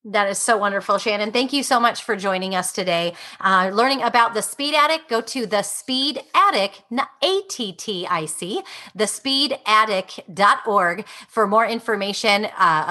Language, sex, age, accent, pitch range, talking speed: English, female, 30-49, American, 180-250 Hz, 165 wpm